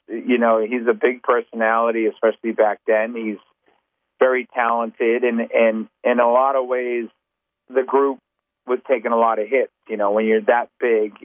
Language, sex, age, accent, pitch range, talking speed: English, male, 40-59, American, 105-120 Hz, 175 wpm